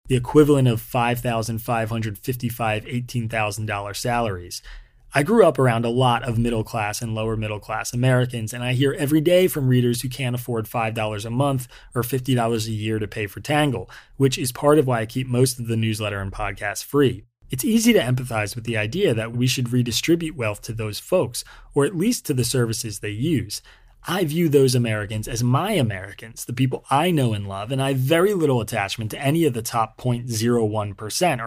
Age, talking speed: 30-49, 190 wpm